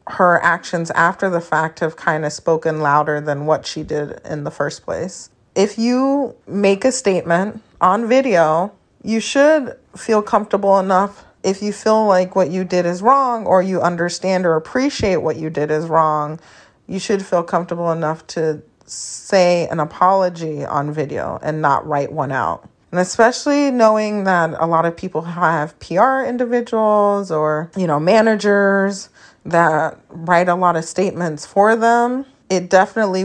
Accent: American